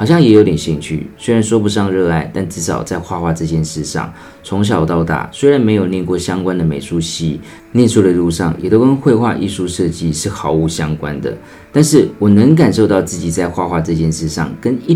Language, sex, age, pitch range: Chinese, male, 40-59, 80-105 Hz